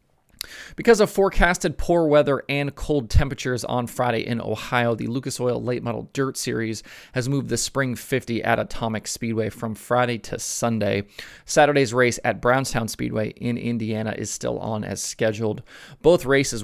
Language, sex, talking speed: English, male, 160 wpm